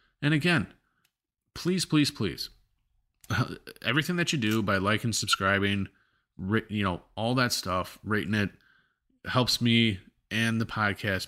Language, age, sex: English, 30-49, male